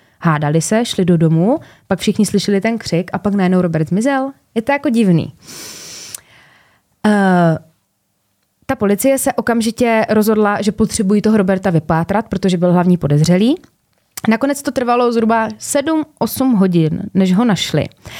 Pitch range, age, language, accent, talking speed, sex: 175-230 Hz, 20-39, Czech, native, 140 wpm, female